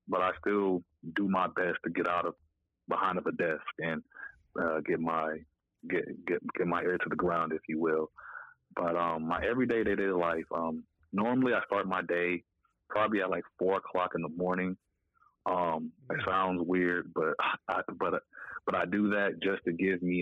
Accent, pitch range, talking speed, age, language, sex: American, 80-90 Hz, 190 wpm, 30-49, English, male